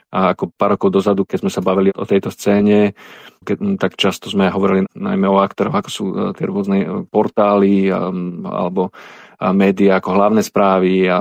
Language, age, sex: Slovak, 40-59, male